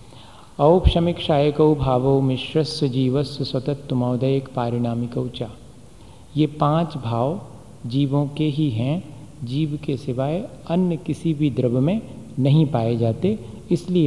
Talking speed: 115 wpm